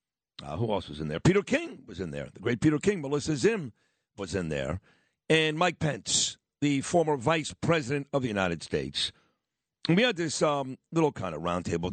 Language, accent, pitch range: English, American, 140-170 Hz